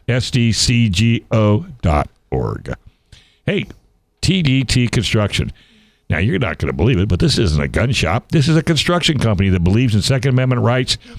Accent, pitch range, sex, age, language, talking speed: American, 100-120 Hz, male, 60-79, English, 150 wpm